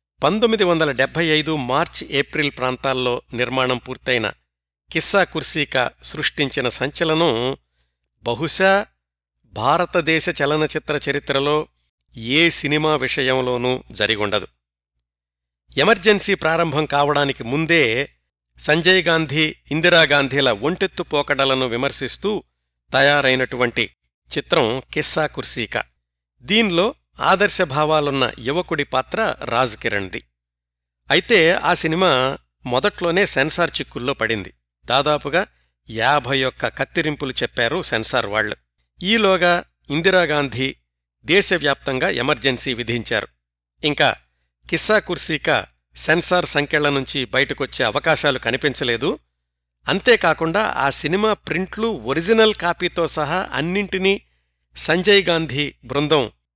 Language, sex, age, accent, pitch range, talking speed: Telugu, male, 60-79, native, 115-165 Hz, 85 wpm